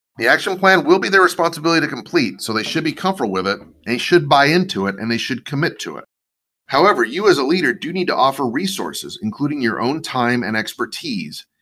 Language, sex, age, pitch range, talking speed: English, male, 30-49, 110-170 Hz, 225 wpm